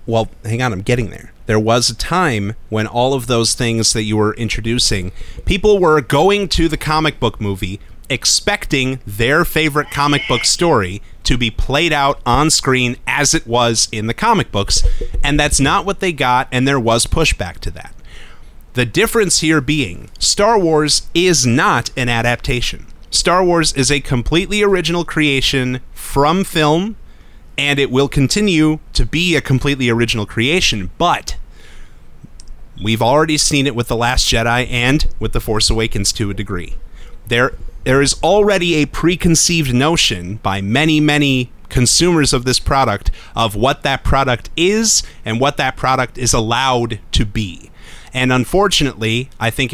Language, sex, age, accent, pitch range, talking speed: English, male, 30-49, American, 115-155 Hz, 165 wpm